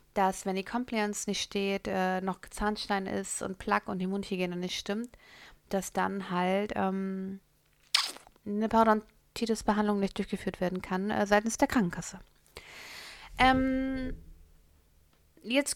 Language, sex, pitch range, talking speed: German, female, 195-230 Hz, 125 wpm